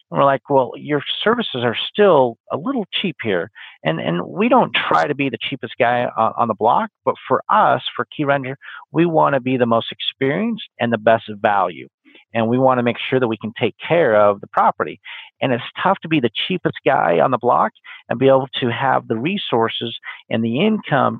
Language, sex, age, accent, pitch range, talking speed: English, male, 50-69, American, 115-145 Hz, 220 wpm